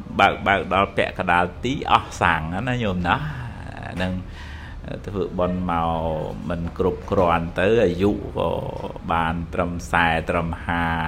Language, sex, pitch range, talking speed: English, male, 85-105 Hz, 145 wpm